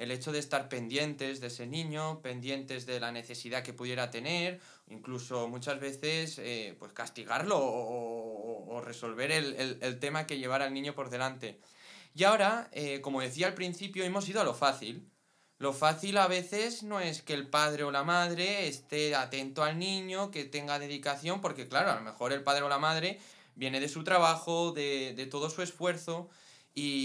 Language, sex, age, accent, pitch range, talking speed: Spanish, male, 20-39, Spanish, 135-170 Hz, 185 wpm